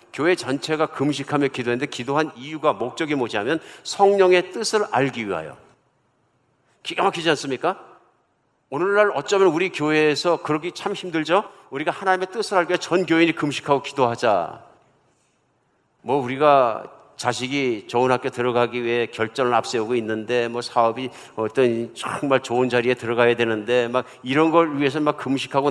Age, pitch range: 50-69, 125-170 Hz